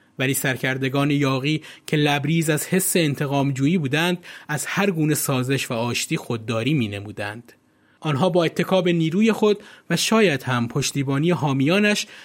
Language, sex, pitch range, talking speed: Persian, male, 130-180 Hz, 130 wpm